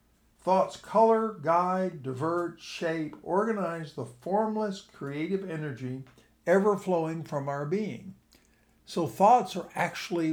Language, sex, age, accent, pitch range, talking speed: English, male, 60-79, American, 150-205 Hz, 110 wpm